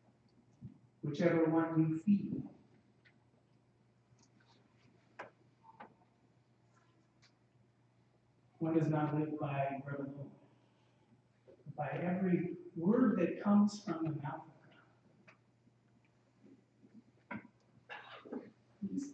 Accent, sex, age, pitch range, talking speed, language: American, male, 50-69, 150-205 Hz, 65 wpm, English